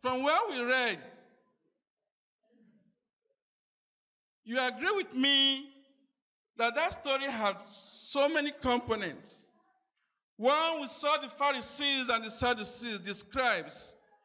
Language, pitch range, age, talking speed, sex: English, 225-290 Hz, 50-69, 105 wpm, male